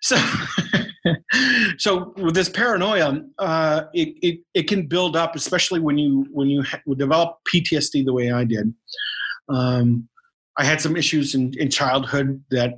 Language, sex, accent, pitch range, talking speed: English, male, American, 130-150 Hz, 155 wpm